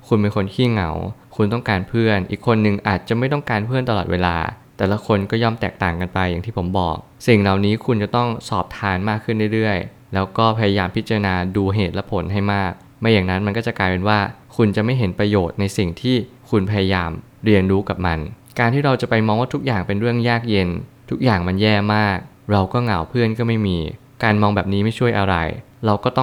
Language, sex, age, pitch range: Thai, male, 20-39, 100-120 Hz